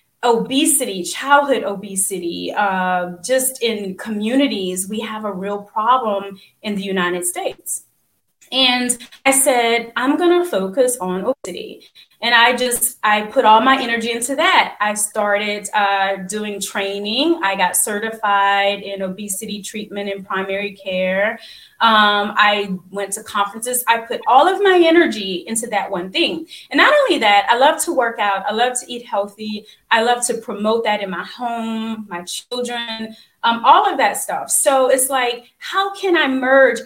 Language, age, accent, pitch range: English, 20-39, American, 200-265 Hz